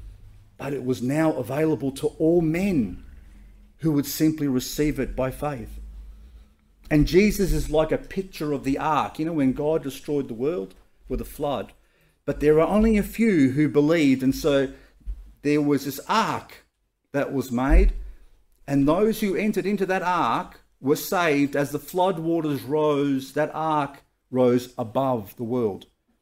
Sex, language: male, English